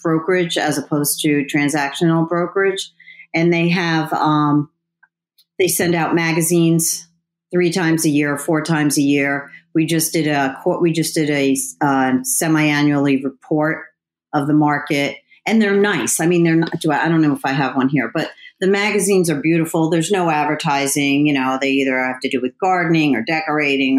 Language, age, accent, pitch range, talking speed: English, 40-59, American, 140-170 Hz, 185 wpm